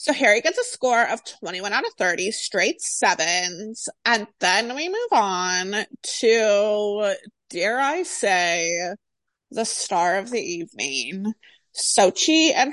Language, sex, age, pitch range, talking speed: English, female, 20-39, 190-265 Hz, 130 wpm